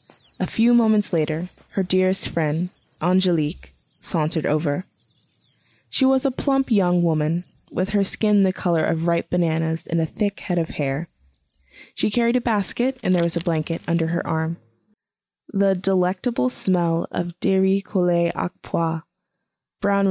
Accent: American